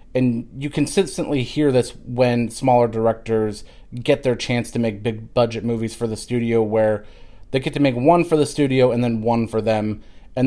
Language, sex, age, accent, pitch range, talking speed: English, male, 30-49, American, 110-125 Hz, 195 wpm